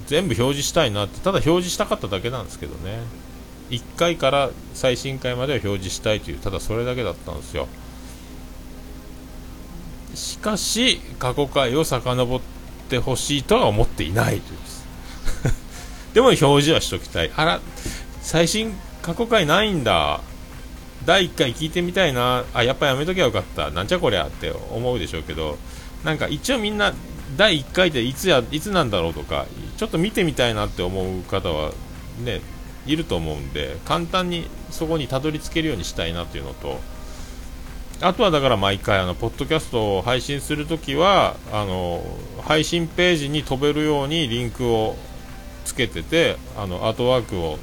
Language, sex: Japanese, male